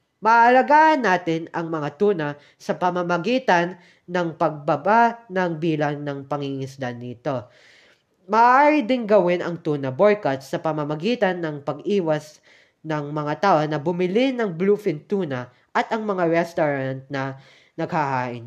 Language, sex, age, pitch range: Filipino, female, 20-39, 145-210 Hz